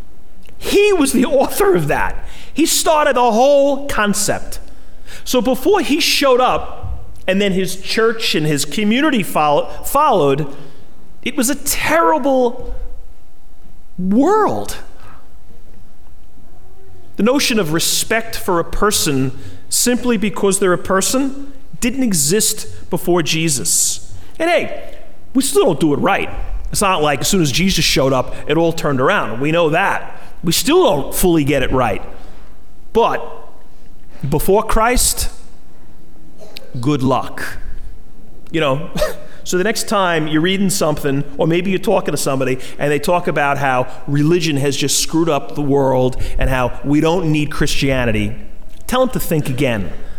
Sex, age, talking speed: male, 40-59, 140 wpm